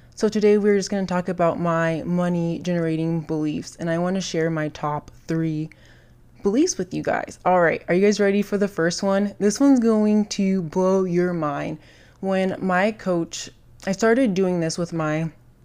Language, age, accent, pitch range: English, 20-39, American, 160-205 Hz